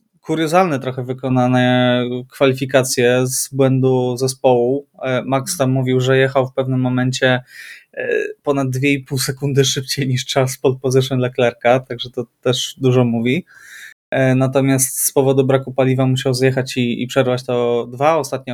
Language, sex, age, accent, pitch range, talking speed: Polish, male, 20-39, native, 125-145 Hz, 135 wpm